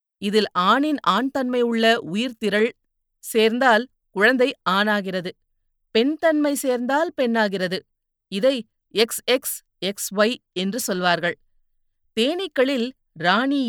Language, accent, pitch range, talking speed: Tamil, native, 195-250 Hz, 90 wpm